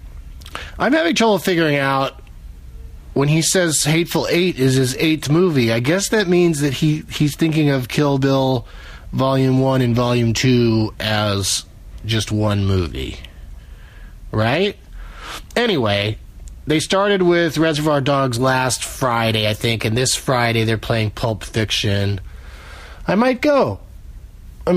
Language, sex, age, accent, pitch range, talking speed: English, male, 30-49, American, 120-195 Hz, 135 wpm